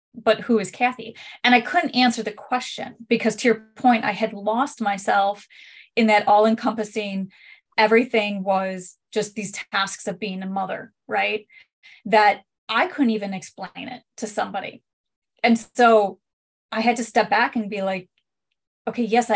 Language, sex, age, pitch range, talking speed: English, female, 20-39, 200-235 Hz, 160 wpm